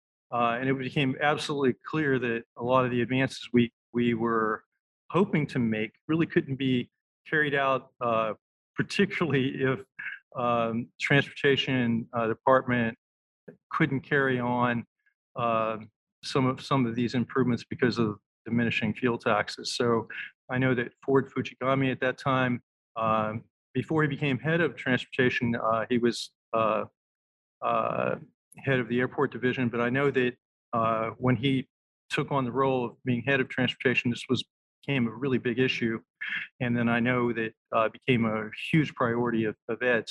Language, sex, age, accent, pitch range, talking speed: English, male, 40-59, American, 115-140 Hz, 155 wpm